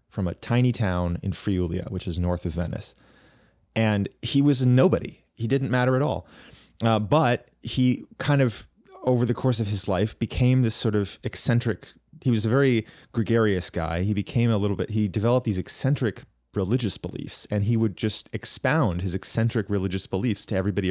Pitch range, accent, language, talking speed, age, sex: 95-120 Hz, American, English, 185 wpm, 30-49, male